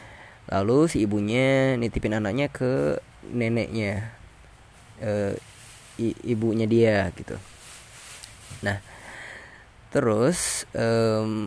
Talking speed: 80 wpm